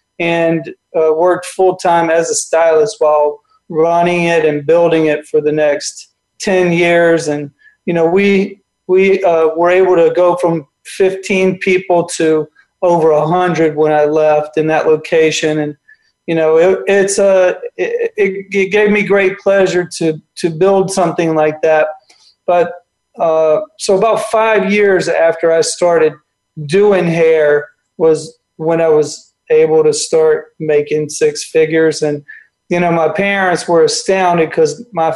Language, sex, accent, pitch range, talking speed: English, male, American, 160-195 Hz, 150 wpm